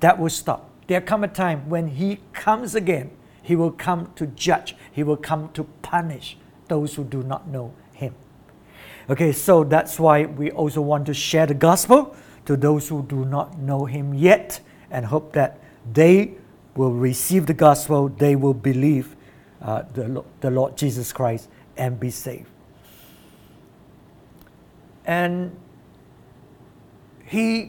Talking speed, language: 145 wpm, English